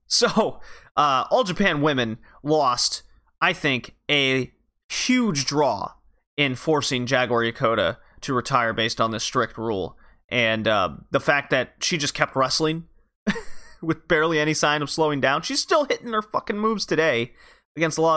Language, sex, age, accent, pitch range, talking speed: English, male, 30-49, American, 130-160 Hz, 160 wpm